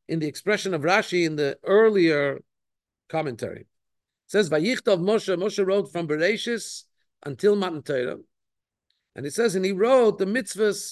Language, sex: English, male